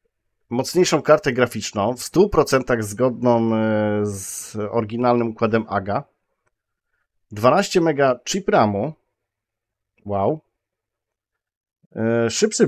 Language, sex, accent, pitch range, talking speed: Polish, male, native, 110-145 Hz, 80 wpm